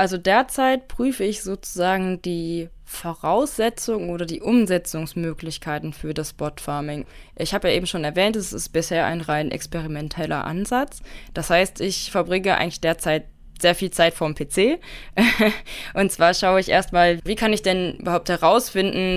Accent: German